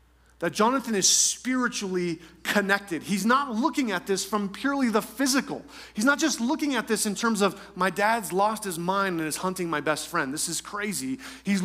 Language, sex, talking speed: English, male, 195 wpm